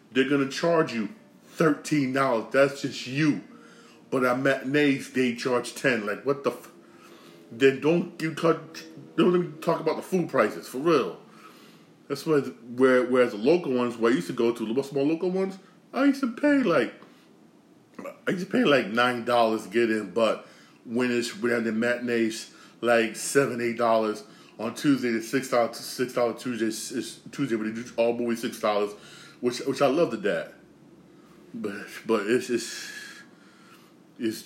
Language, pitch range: English, 110-130 Hz